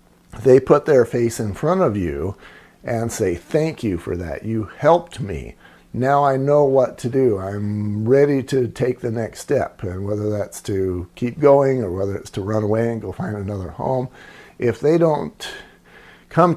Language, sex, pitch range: English, male, 100-125 Hz